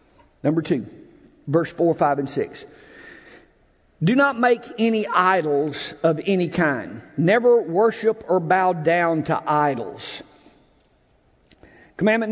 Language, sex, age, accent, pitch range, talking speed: English, male, 50-69, American, 165-220 Hz, 110 wpm